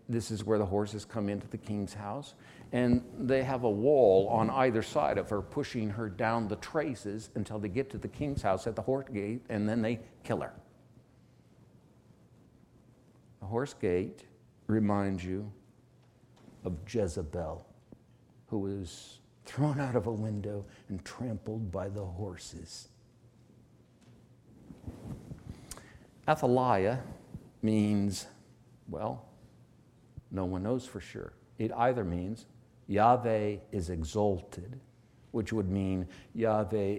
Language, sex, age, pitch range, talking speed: English, male, 60-79, 100-120 Hz, 125 wpm